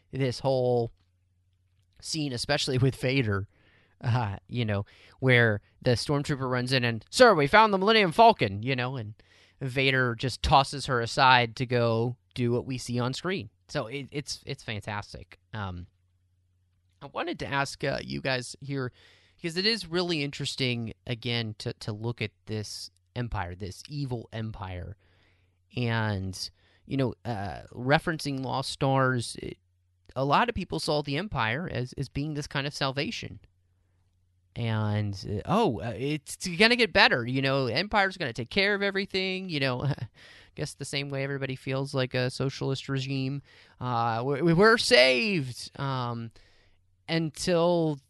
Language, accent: English, American